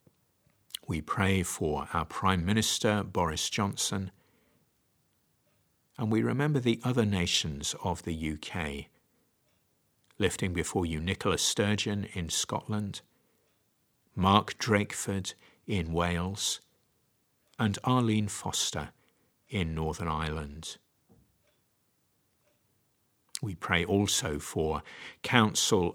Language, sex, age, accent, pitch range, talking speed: English, male, 50-69, British, 85-105 Hz, 90 wpm